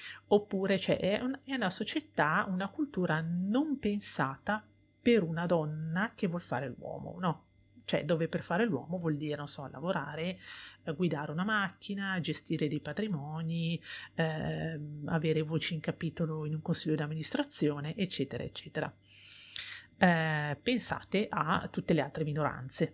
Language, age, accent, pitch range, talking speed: Italian, 30-49, native, 155-200 Hz, 135 wpm